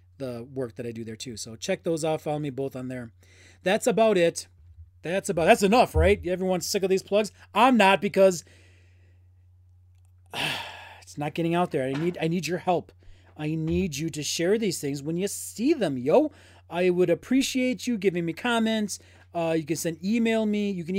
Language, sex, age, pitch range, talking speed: English, male, 30-49, 125-195 Hz, 200 wpm